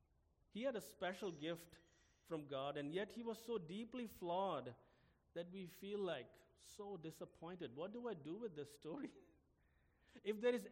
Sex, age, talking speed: male, 50-69, 170 wpm